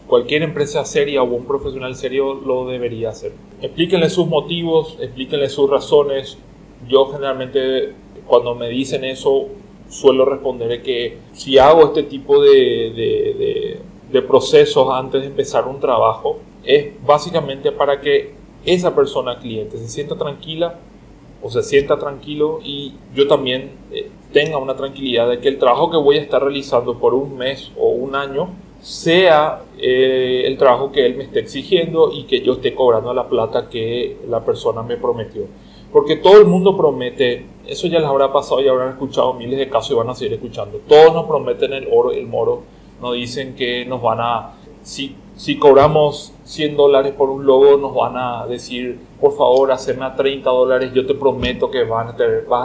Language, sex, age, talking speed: Spanish, male, 30-49, 180 wpm